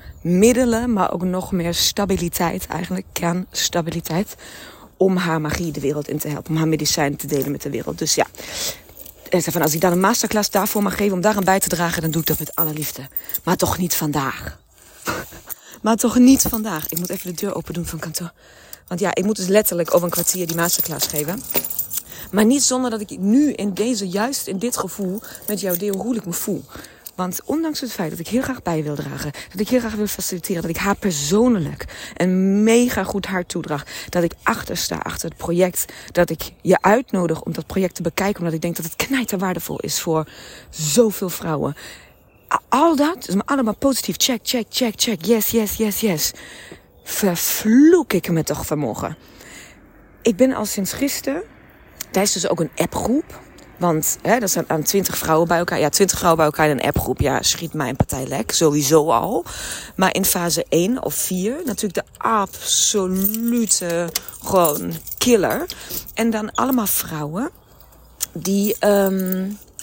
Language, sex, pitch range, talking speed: Dutch, female, 165-215 Hz, 185 wpm